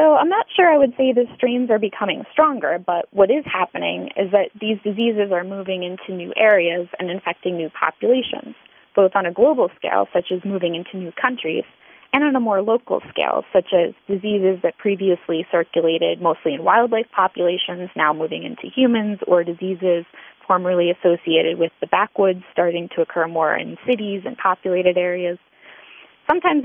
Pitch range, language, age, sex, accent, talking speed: 175-225 Hz, English, 20-39, female, American, 175 wpm